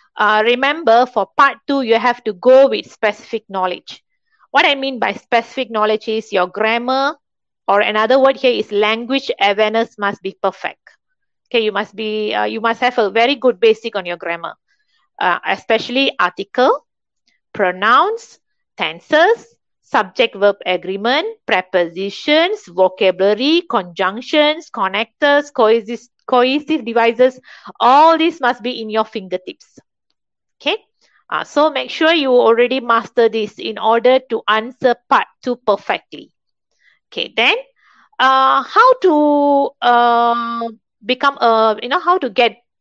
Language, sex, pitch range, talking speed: Malay, female, 215-275 Hz, 135 wpm